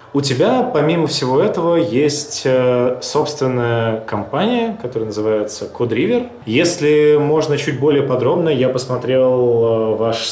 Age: 20-39